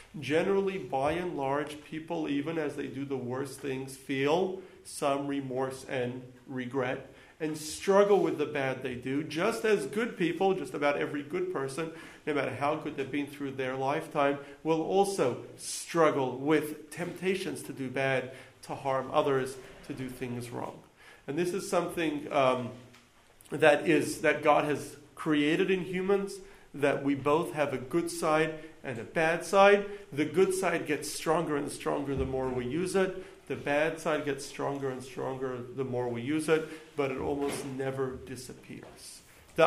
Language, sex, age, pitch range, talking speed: English, male, 40-59, 135-175 Hz, 170 wpm